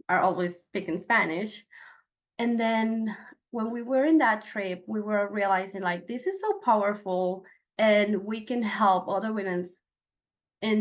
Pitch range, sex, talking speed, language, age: 185-220 Hz, female, 150 wpm, English, 20-39